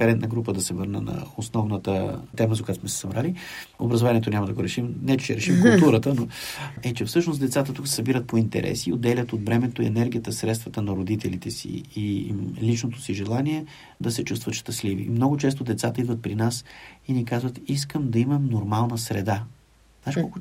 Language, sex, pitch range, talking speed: Bulgarian, male, 105-125 Hz, 190 wpm